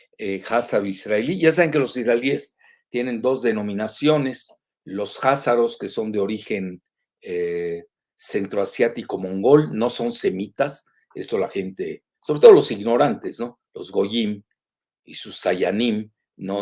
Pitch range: 105-155 Hz